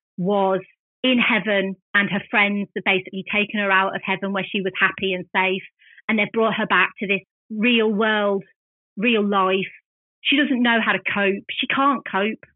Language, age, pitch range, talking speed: English, 30-49, 205-265 Hz, 185 wpm